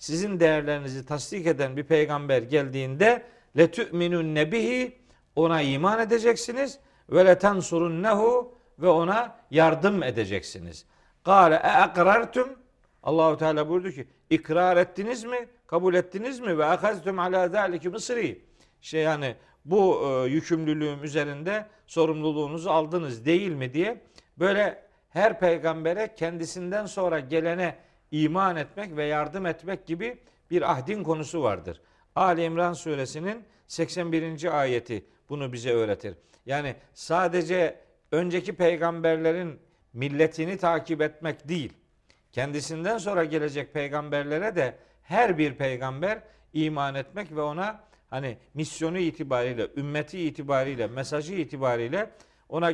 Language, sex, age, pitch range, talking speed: Turkish, male, 50-69, 150-190 Hz, 110 wpm